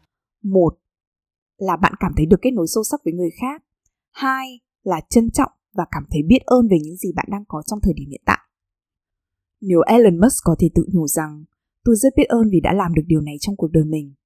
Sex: female